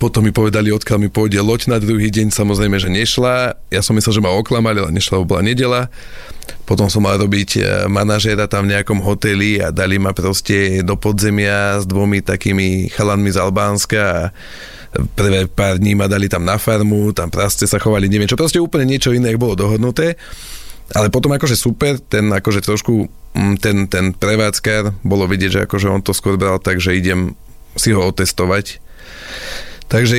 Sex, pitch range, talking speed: male, 100-110 Hz, 175 wpm